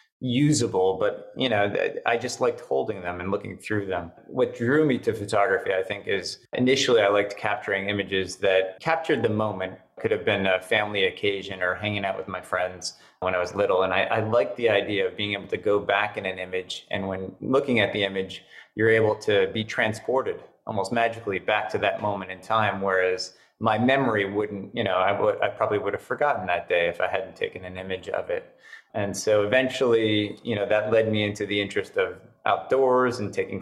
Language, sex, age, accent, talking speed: English, male, 30-49, American, 210 wpm